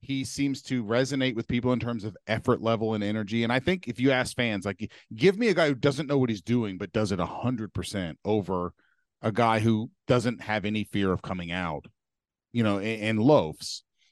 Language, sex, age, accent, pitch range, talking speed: English, male, 40-59, American, 105-140 Hz, 215 wpm